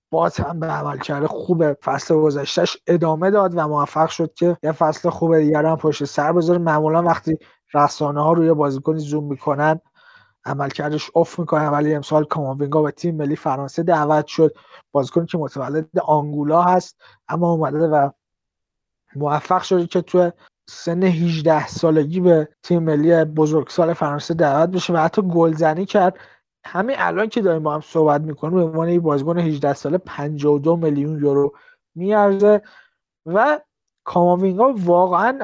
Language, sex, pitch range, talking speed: Persian, male, 150-180 Hz, 150 wpm